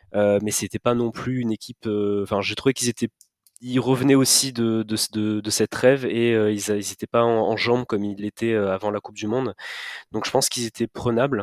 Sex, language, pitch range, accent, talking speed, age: male, French, 105-120 Hz, French, 245 wpm, 20-39